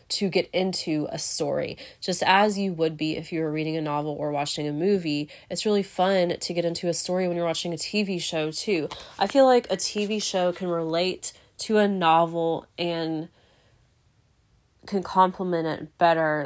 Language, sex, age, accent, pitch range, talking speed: English, female, 20-39, American, 155-180 Hz, 185 wpm